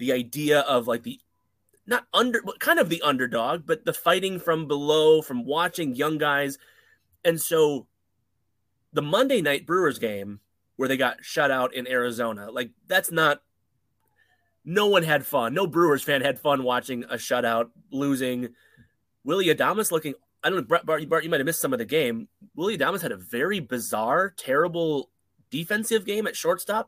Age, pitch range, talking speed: 30-49, 125-180 Hz, 170 wpm